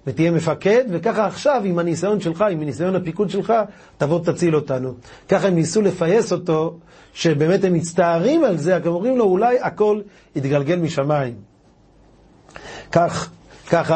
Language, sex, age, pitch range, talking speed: Hebrew, male, 40-59, 135-175 Hz, 135 wpm